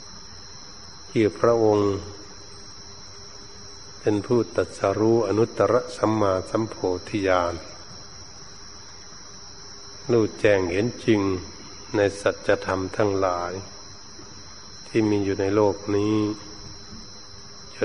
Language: Thai